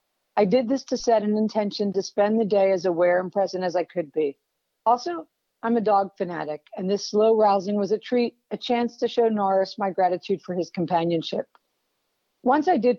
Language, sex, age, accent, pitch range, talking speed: English, female, 50-69, American, 180-215 Hz, 205 wpm